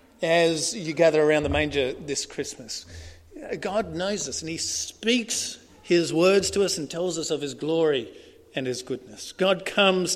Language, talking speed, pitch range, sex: English, 170 wpm, 125-175 Hz, male